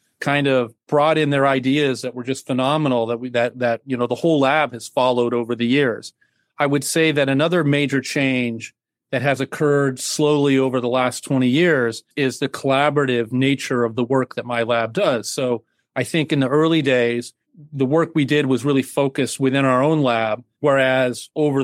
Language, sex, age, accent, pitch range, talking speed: English, male, 40-59, American, 125-145 Hz, 195 wpm